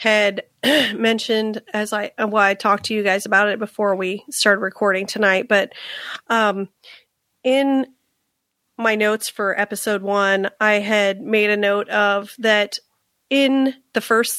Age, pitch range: 30-49, 200-220 Hz